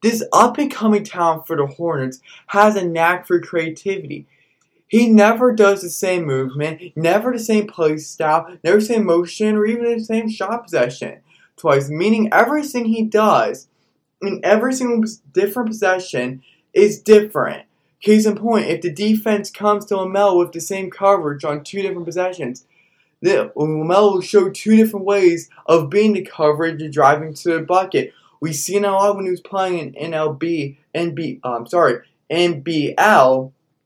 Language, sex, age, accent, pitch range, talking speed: English, male, 20-39, American, 155-205 Hz, 165 wpm